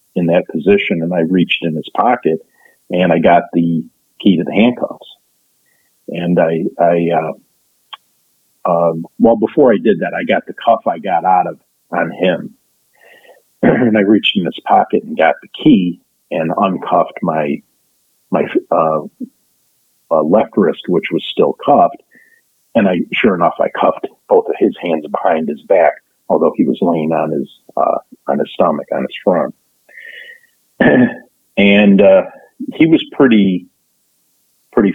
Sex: male